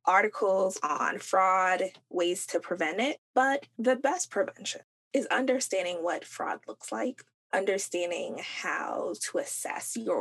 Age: 20-39